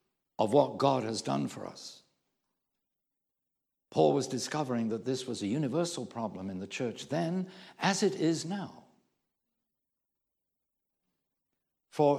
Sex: male